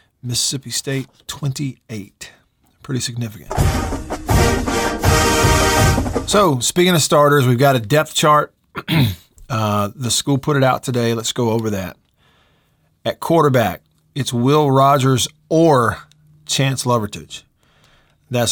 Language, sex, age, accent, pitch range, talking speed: English, male, 40-59, American, 115-145 Hz, 110 wpm